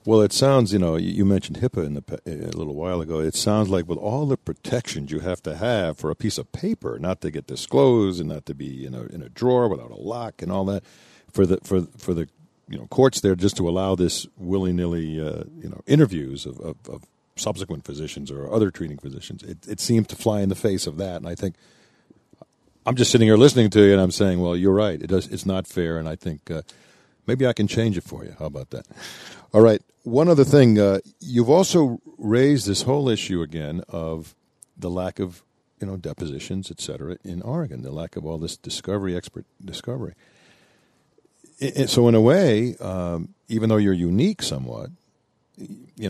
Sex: male